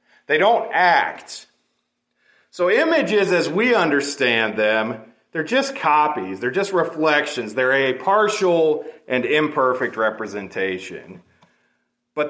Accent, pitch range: American, 115-155 Hz